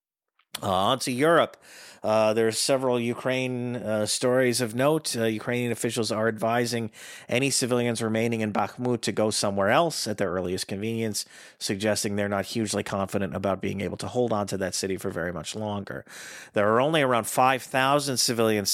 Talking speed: 175 wpm